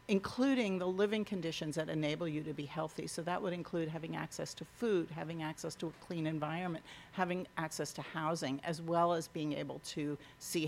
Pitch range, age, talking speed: 150-175 Hz, 50-69, 195 wpm